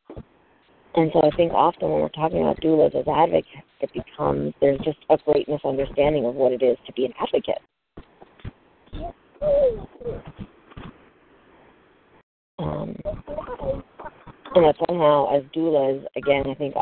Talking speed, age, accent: 130 wpm, 40-59, American